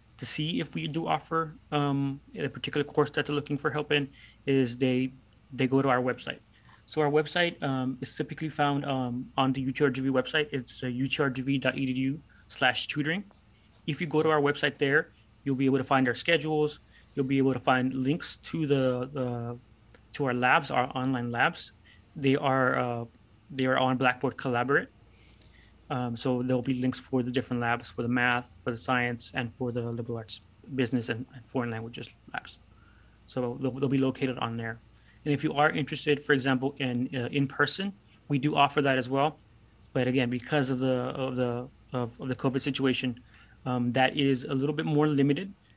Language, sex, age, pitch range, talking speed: English, male, 20-39, 120-140 Hz, 195 wpm